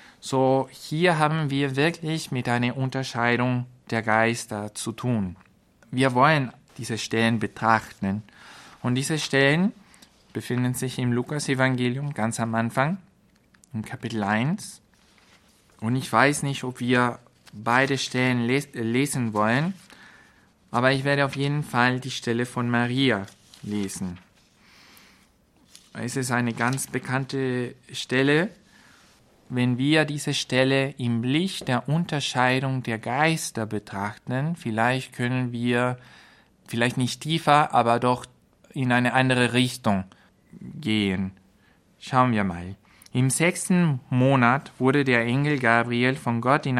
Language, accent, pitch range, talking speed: German, German, 115-140 Hz, 120 wpm